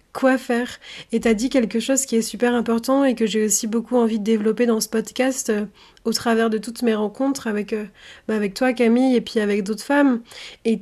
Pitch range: 225-255 Hz